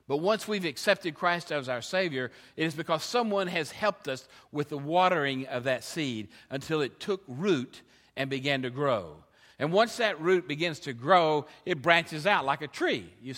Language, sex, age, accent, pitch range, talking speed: English, male, 50-69, American, 140-200 Hz, 195 wpm